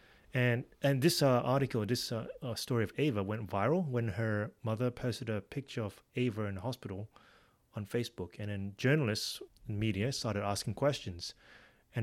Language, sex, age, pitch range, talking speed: English, male, 30-49, 105-130 Hz, 175 wpm